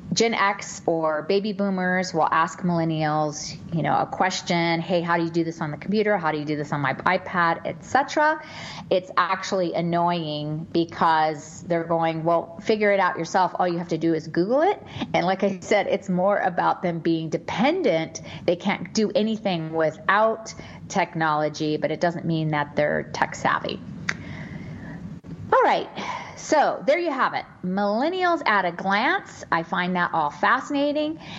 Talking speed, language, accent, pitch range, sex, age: 170 wpm, English, American, 165-215 Hz, female, 30-49